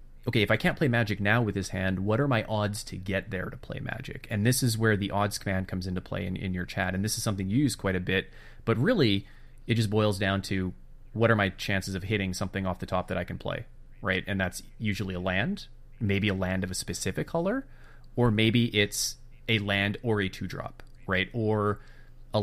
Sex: male